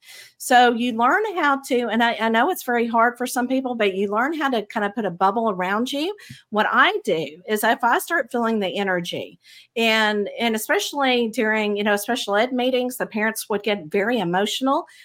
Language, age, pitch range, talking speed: English, 50-69, 205-260 Hz, 205 wpm